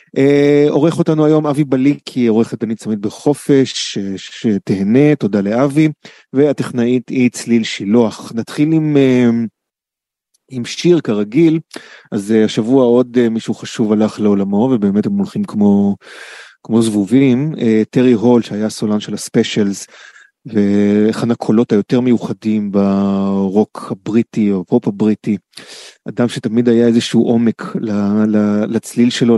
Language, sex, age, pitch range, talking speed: Hebrew, male, 30-49, 105-125 Hz, 125 wpm